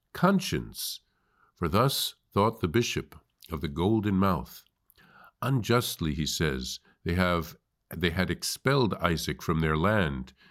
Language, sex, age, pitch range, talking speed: English, male, 50-69, 85-125 Hz, 125 wpm